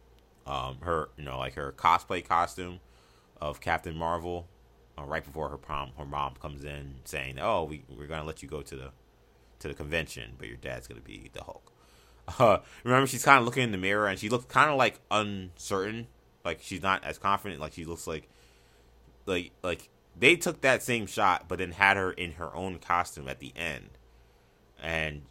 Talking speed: 195 wpm